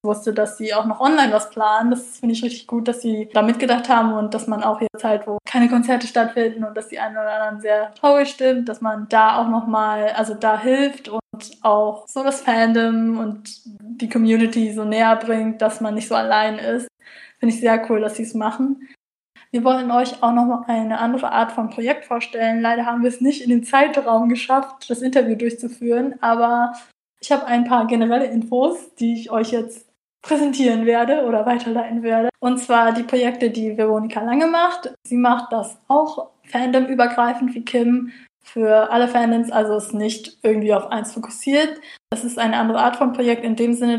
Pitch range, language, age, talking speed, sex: 225-245 Hz, German, 20-39, 200 wpm, female